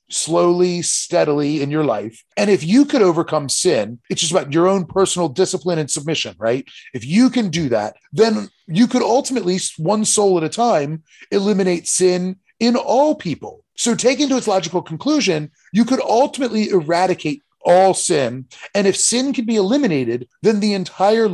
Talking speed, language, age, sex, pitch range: 170 wpm, English, 30-49, male, 155-215 Hz